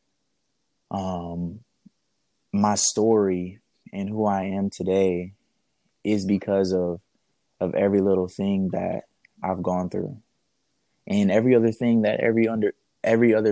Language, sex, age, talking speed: English, male, 20-39, 125 wpm